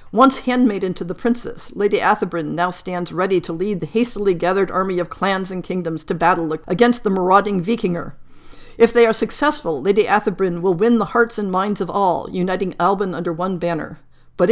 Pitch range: 180-230 Hz